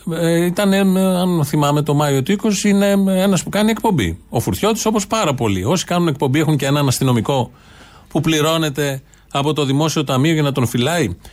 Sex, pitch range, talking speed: male, 130-175 Hz, 180 wpm